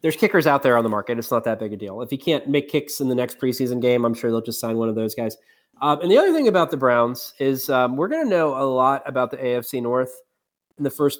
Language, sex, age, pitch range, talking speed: English, male, 30-49, 125-150 Hz, 295 wpm